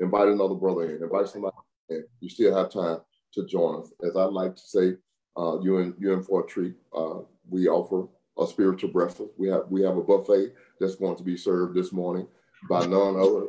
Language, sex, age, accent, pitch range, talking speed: English, male, 40-59, American, 90-110 Hz, 215 wpm